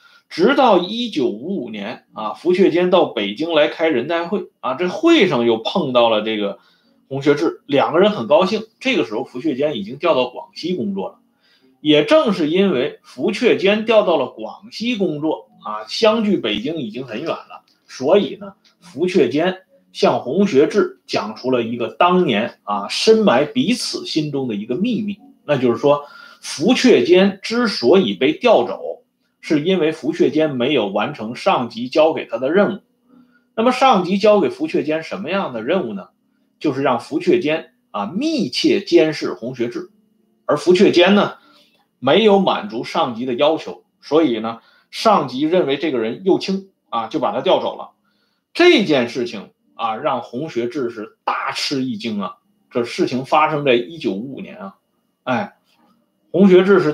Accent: native